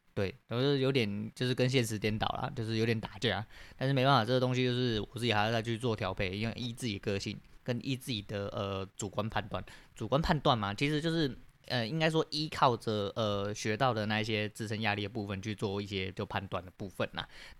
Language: Chinese